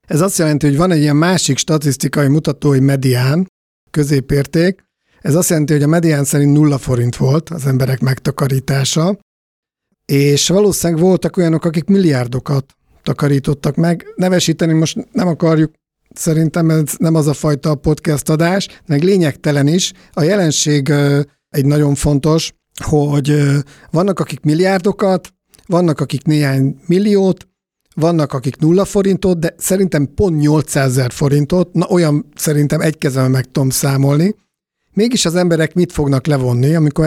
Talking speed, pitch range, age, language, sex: 140 wpm, 145-175 Hz, 50-69, Hungarian, male